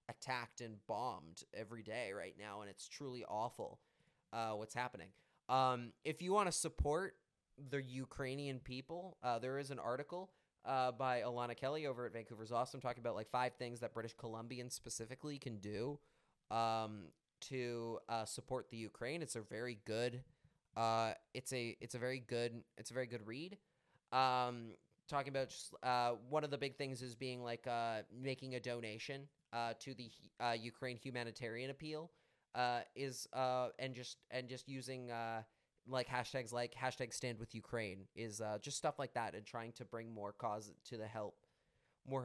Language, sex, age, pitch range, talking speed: English, male, 20-39, 115-135 Hz, 175 wpm